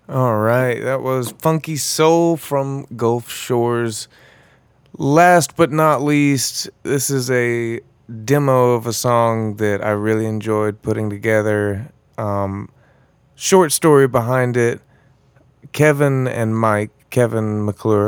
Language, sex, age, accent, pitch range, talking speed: English, male, 20-39, American, 110-135 Hz, 120 wpm